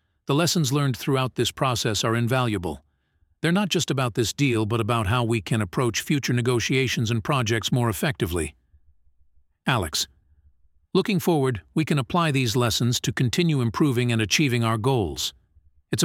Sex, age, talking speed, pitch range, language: male, 50-69, 155 wpm, 90-140 Hz, English